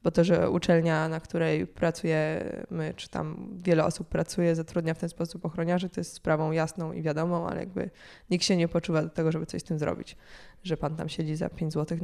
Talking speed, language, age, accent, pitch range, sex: 215 wpm, Polish, 20-39, native, 175-220 Hz, female